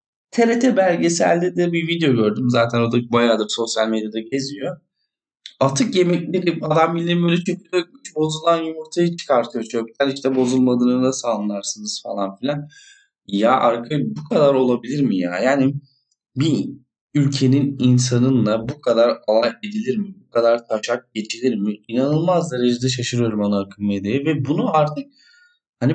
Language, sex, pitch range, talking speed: Turkish, male, 120-165 Hz, 140 wpm